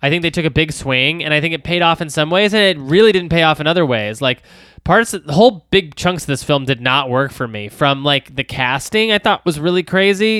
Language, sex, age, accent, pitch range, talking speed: English, male, 20-39, American, 125-175 Hz, 285 wpm